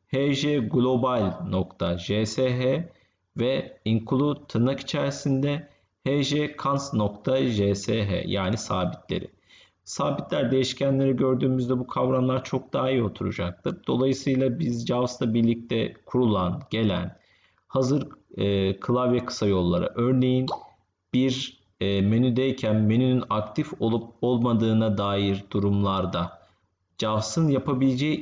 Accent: native